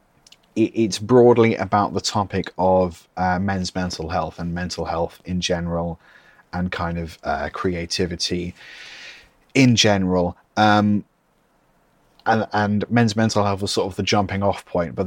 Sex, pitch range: male, 90-105 Hz